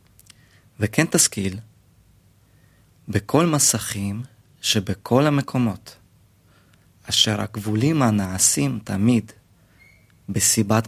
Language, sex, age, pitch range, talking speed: Hebrew, male, 30-49, 100-120 Hz, 60 wpm